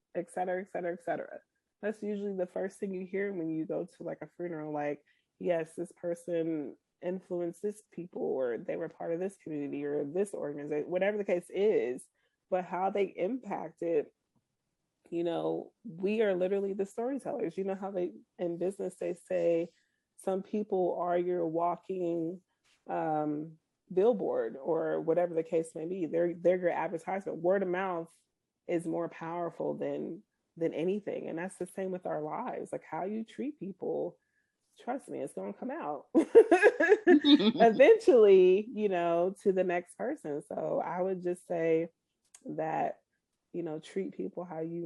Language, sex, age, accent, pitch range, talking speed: English, female, 30-49, American, 165-195 Hz, 165 wpm